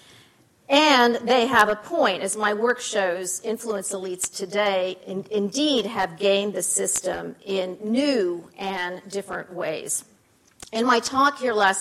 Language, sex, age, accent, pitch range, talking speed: English, female, 50-69, American, 190-245 Hz, 140 wpm